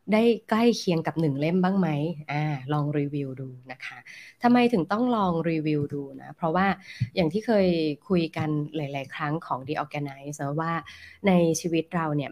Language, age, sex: Thai, 20-39, female